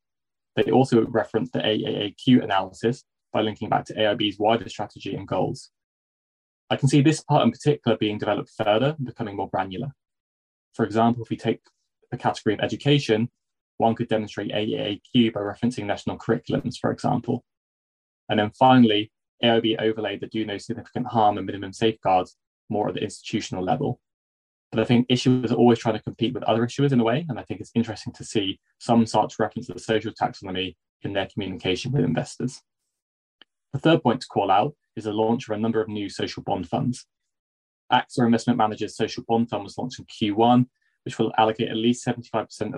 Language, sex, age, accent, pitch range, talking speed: English, male, 20-39, British, 105-120 Hz, 185 wpm